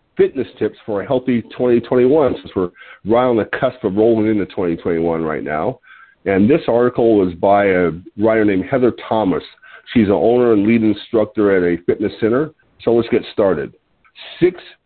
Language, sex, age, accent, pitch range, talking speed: English, male, 50-69, American, 105-135 Hz, 180 wpm